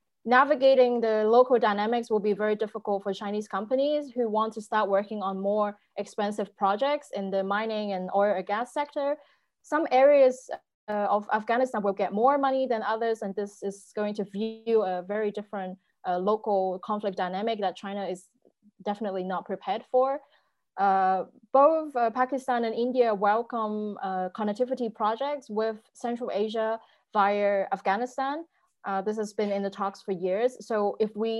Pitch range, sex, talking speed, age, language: 200-240 Hz, female, 165 wpm, 20-39, English